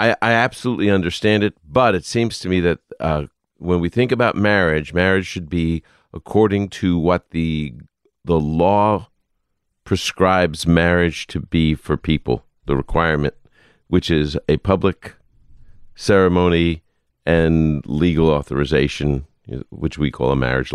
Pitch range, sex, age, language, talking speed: 75-90 Hz, male, 50-69, English, 135 wpm